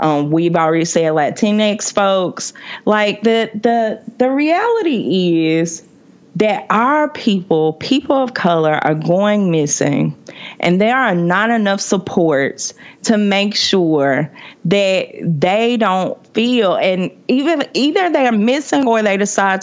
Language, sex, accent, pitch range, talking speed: English, female, American, 170-225 Hz, 130 wpm